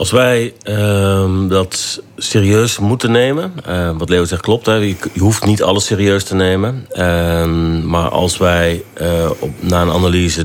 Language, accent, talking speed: Dutch, Dutch, 165 wpm